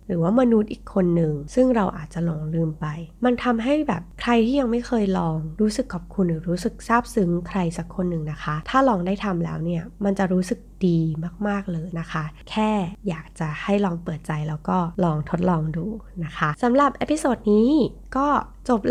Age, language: 20-39, Thai